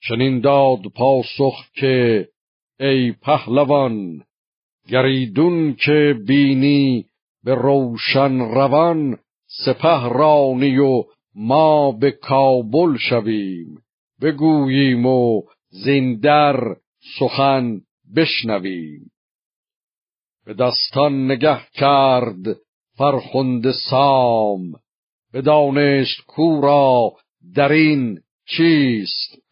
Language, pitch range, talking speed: Persian, 120-140 Hz, 75 wpm